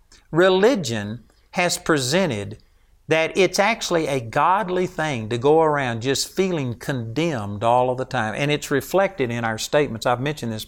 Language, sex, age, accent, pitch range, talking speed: English, male, 60-79, American, 120-175 Hz, 155 wpm